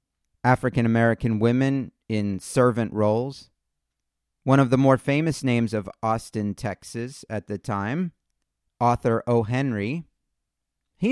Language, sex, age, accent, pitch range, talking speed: English, male, 40-59, American, 95-135 Hz, 115 wpm